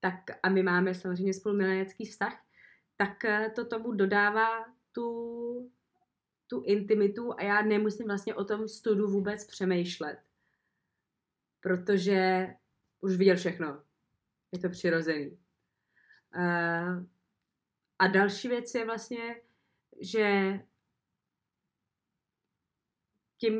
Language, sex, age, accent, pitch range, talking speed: Czech, female, 20-39, native, 190-215 Hz, 95 wpm